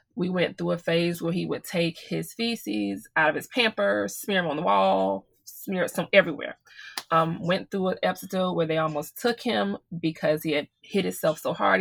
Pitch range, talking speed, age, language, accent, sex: 155-185 Hz, 205 wpm, 20-39, English, American, female